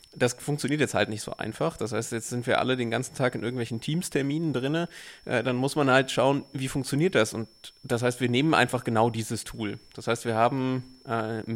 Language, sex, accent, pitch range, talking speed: German, male, German, 115-135 Hz, 225 wpm